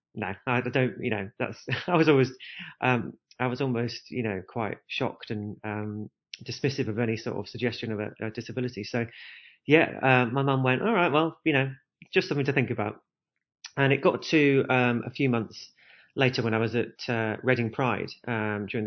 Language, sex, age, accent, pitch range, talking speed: English, male, 30-49, British, 110-135 Hz, 200 wpm